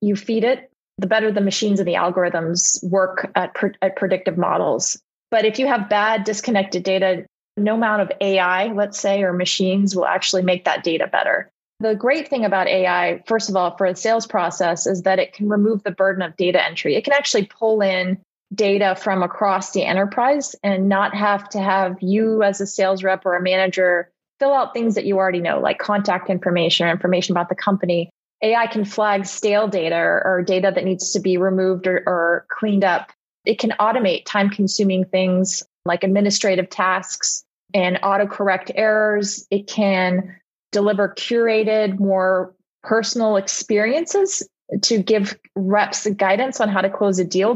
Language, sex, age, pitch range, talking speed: English, female, 20-39, 185-215 Hz, 175 wpm